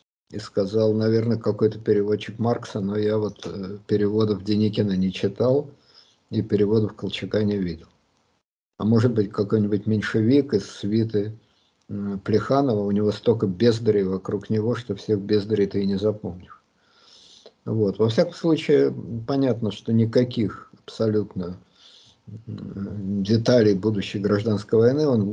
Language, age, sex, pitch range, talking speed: Russian, 50-69, male, 100-125 Hz, 130 wpm